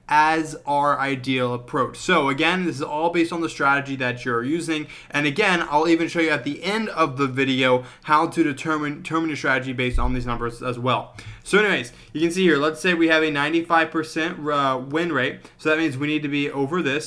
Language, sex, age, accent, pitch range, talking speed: English, male, 20-39, American, 135-165 Hz, 220 wpm